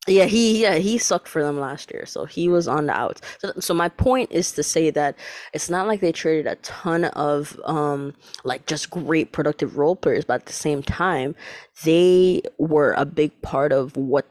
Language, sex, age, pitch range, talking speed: English, female, 20-39, 150-180 Hz, 210 wpm